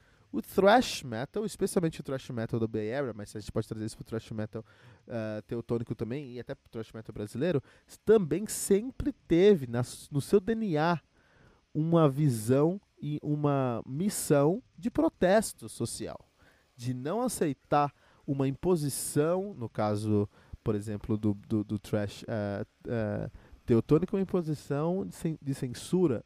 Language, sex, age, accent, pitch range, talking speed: Portuguese, male, 20-39, Brazilian, 110-145 Hz, 150 wpm